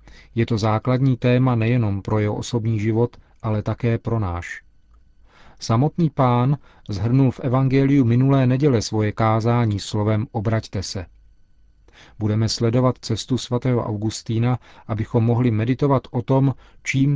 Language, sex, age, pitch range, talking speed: Czech, male, 40-59, 105-130 Hz, 125 wpm